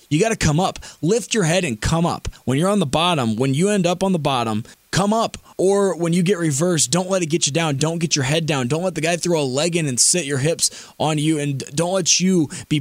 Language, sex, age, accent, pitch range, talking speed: English, male, 20-39, American, 140-175 Hz, 280 wpm